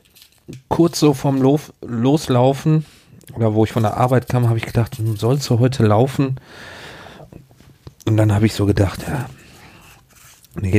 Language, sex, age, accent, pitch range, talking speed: German, male, 40-59, German, 105-130 Hz, 150 wpm